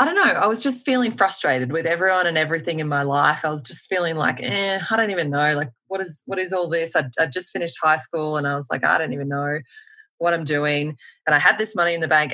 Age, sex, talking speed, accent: 20-39, female, 275 wpm, Australian